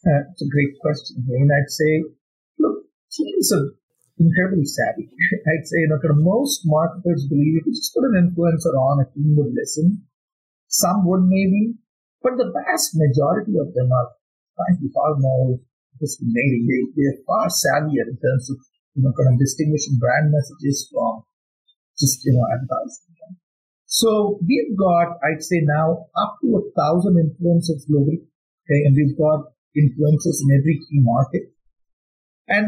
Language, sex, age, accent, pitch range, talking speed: English, male, 50-69, Indian, 145-190 Hz, 165 wpm